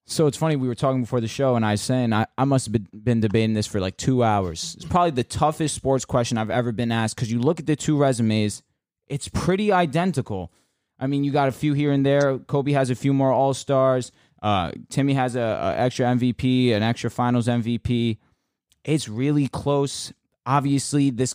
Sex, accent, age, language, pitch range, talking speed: male, American, 20-39, English, 115-140 Hz, 210 wpm